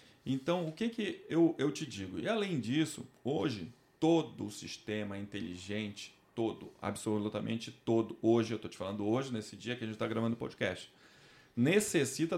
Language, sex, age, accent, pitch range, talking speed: Portuguese, male, 40-59, Brazilian, 110-140 Hz, 170 wpm